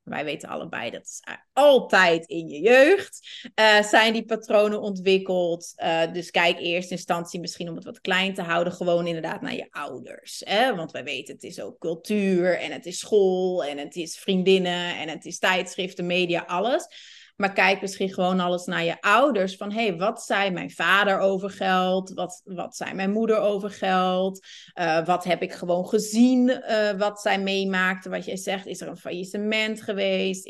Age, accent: 30-49, Dutch